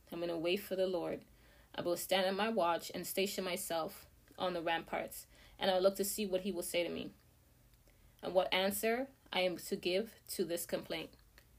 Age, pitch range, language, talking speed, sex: 20-39, 170-200 Hz, English, 205 wpm, female